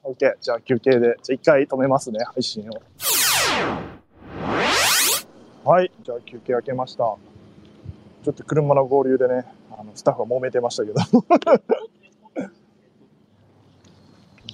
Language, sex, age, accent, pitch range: Japanese, male, 20-39, native, 130-220 Hz